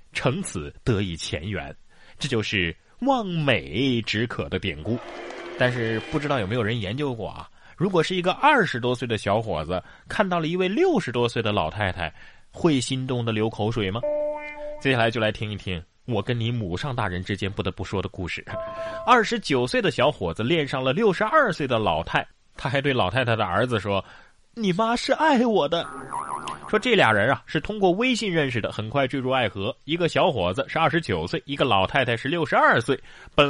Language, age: Chinese, 20-39